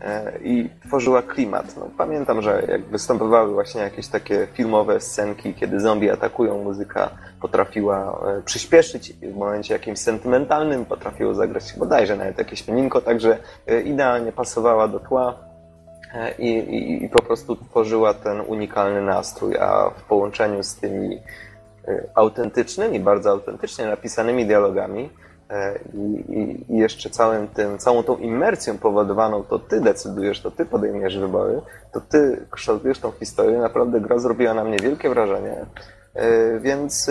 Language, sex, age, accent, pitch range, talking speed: Polish, male, 20-39, native, 105-135 Hz, 130 wpm